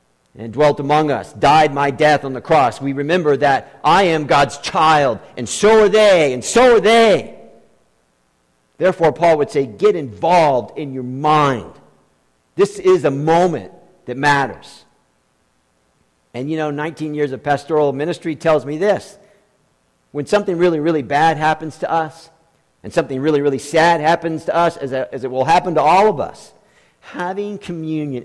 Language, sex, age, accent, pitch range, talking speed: English, male, 50-69, American, 145-200 Hz, 165 wpm